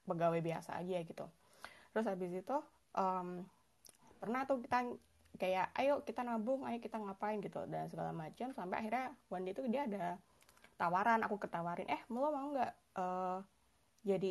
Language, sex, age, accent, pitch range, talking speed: Indonesian, female, 20-39, native, 175-220 Hz, 155 wpm